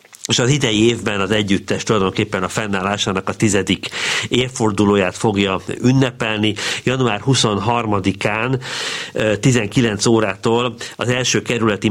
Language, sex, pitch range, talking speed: Hungarian, male, 105-125 Hz, 105 wpm